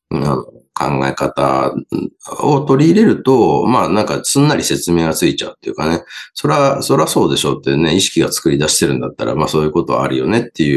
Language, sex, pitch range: Japanese, male, 70-105 Hz